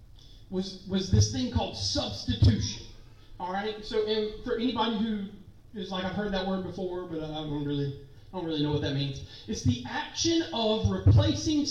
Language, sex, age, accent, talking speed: English, male, 40-59, American, 190 wpm